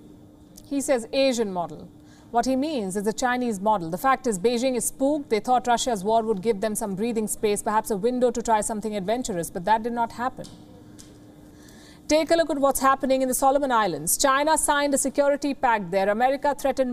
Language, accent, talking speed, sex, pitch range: English, Indian, 200 wpm, female, 230-280 Hz